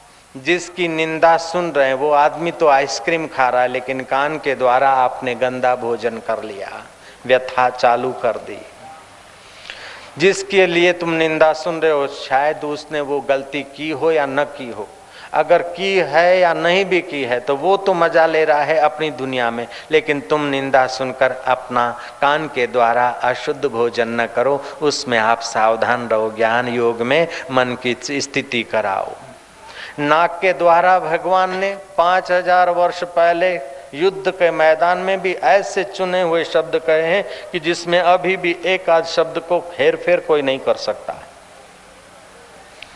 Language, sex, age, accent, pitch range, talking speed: Hindi, male, 50-69, native, 130-180 Hz, 165 wpm